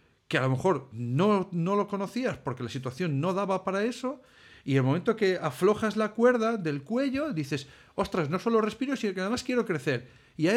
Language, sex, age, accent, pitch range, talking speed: Spanish, male, 40-59, Spanish, 130-200 Hz, 205 wpm